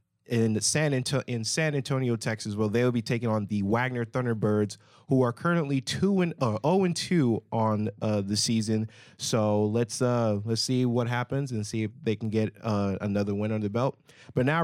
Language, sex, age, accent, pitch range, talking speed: English, male, 30-49, American, 105-130 Hz, 200 wpm